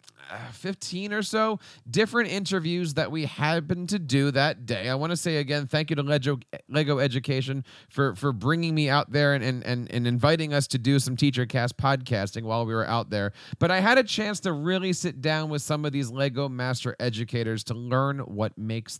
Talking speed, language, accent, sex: 210 wpm, English, American, male